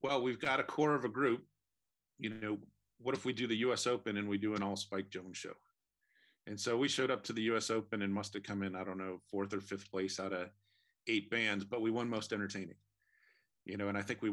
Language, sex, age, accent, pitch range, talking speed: English, male, 40-59, American, 100-115 Hz, 250 wpm